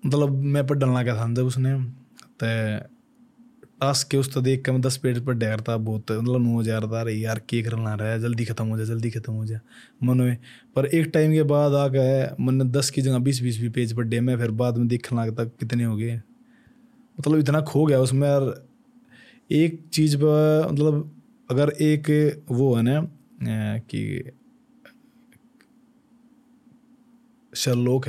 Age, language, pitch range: 20-39, Hindi, 115-145 Hz